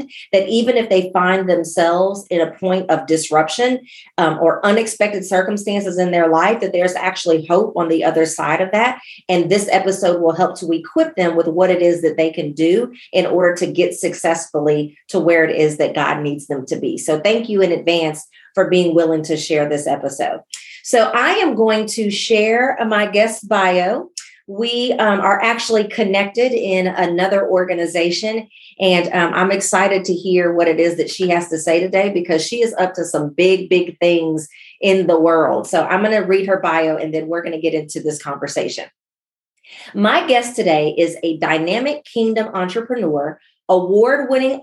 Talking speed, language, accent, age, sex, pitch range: 185 wpm, English, American, 40-59, female, 165-215 Hz